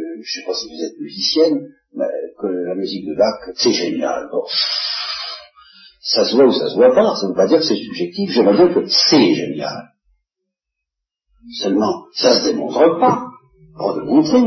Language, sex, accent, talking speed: French, male, French, 200 wpm